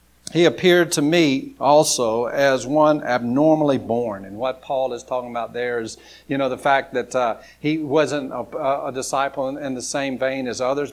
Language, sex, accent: English, male, American